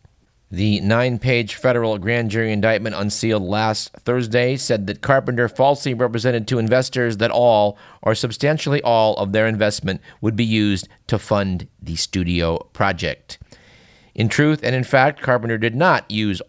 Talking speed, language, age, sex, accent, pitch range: 150 wpm, English, 50-69, male, American, 95-125 Hz